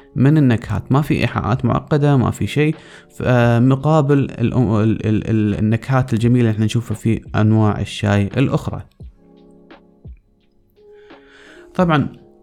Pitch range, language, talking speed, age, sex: 115-150 Hz, Arabic, 95 wpm, 20-39, male